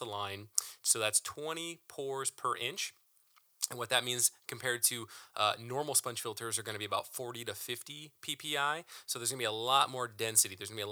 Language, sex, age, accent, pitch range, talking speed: English, male, 30-49, American, 110-135 Hz, 210 wpm